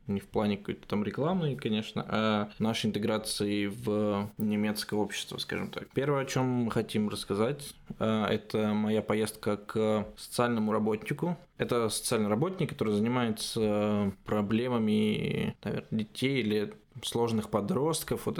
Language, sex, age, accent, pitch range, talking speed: Russian, male, 20-39, native, 105-125 Hz, 125 wpm